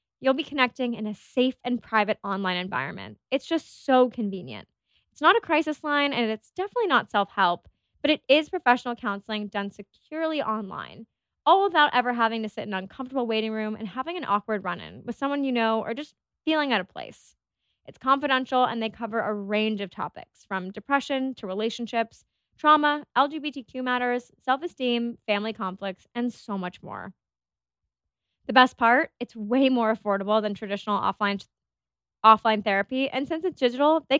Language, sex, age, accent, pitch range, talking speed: English, female, 20-39, American, 205-260 Hz, 170 wpm